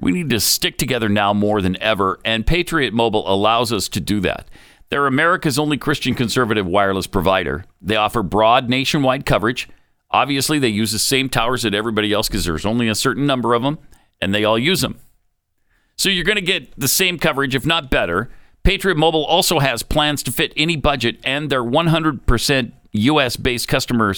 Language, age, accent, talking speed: English, 50-69, American, 190 wpm